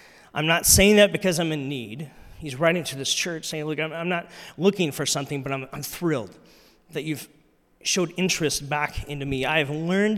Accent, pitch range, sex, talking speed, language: American, 130-170 Hz, male, 200 wpm, English